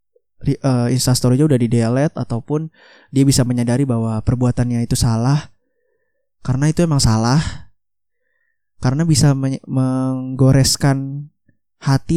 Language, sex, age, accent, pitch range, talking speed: Indonesian, male, 20-39, native, 115-140 Hz, 115 wpm